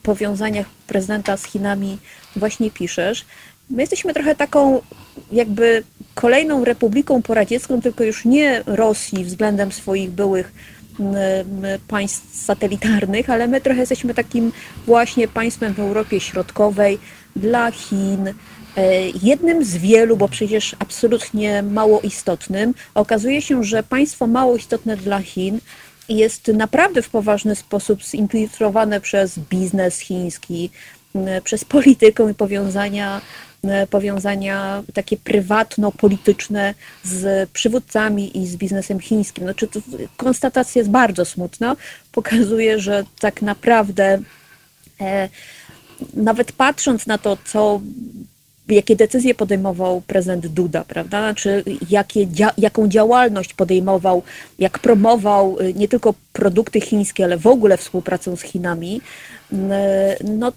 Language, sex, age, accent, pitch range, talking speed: Polish, female, 30-49, native, 195-230 Hz, 110 wpm